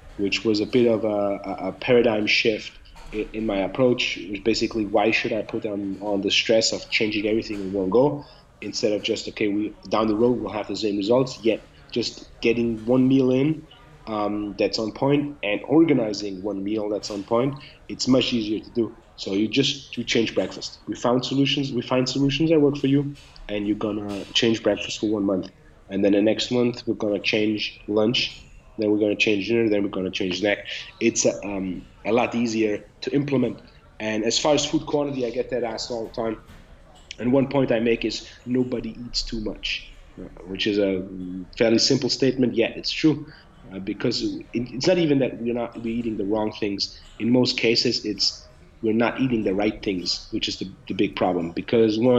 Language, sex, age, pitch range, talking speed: English, male, 30-49, 105-125 Hz, 205 wpm